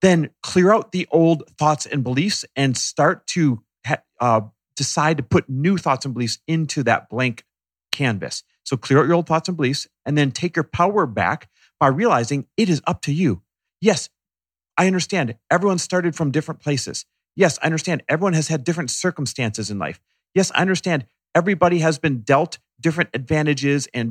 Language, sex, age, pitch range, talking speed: English, male, 40-59, 130-180 Hz, 180 wpm